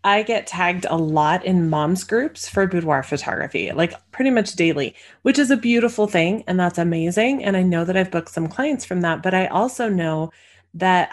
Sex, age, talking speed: female, 30-49, 205 wpm